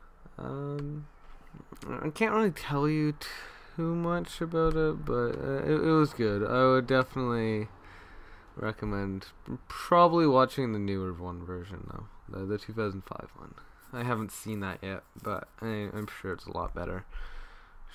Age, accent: 20-39, American